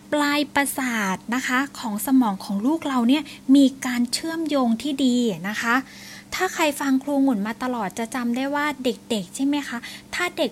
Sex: female